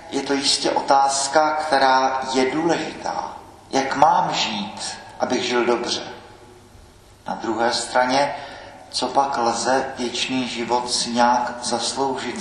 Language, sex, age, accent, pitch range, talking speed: Czech, male, 40-59, native, 110-125 Hz, 115 wpm